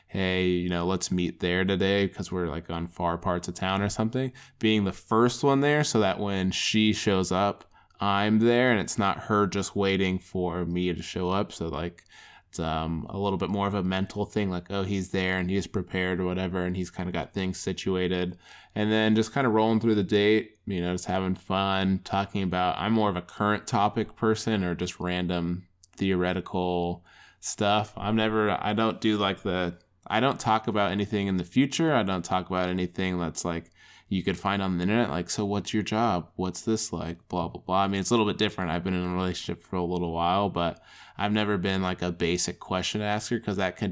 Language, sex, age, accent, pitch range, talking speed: English, male, 20-39, American, 90-105 Hz, 225 wpm